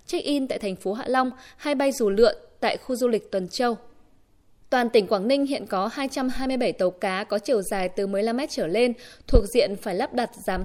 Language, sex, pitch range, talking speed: Vietnamese, female, 210-280 Hz, 215 wpm